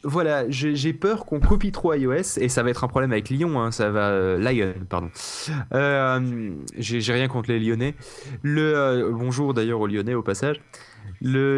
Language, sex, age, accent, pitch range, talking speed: French, male, 20-39, French, 120-155 Hz, 195 wpm